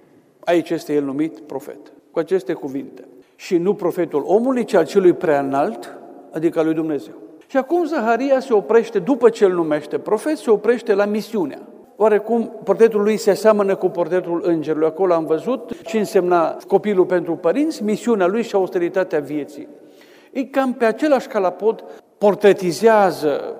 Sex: male